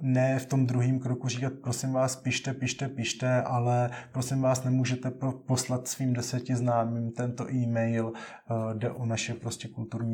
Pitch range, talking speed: 115-130 Hz, 160 wpm